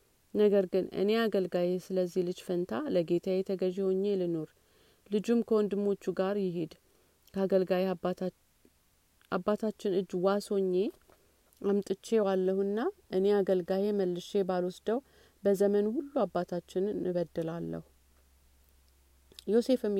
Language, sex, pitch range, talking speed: Amharic, female, 175-195 Hz, 95 wpm